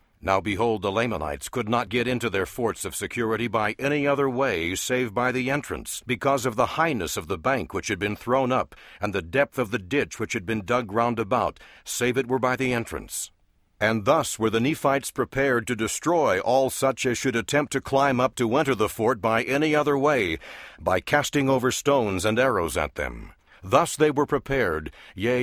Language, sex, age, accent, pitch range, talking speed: English, male, 60-79, American, 110-135 Hz, 205 wpm